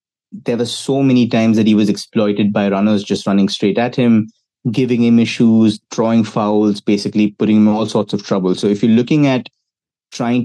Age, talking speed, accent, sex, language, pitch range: 30-49, 200 wpm, Indian, male, English, 100-120 Hz